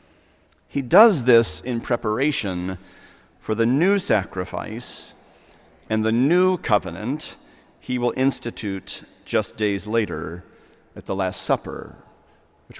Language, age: English, 40-59